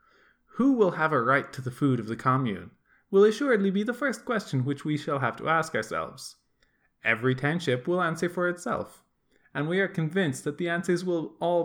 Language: English